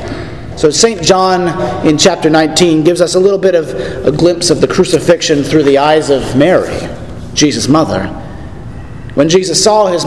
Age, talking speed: 40-59, 165 wpm